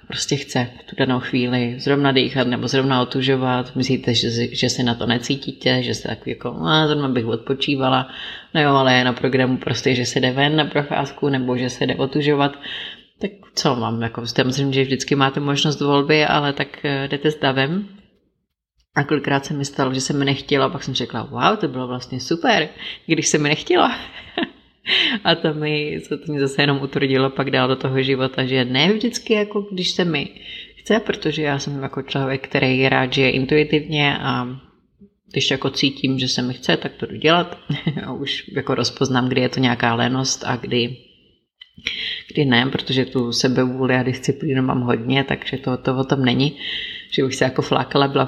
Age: 30-49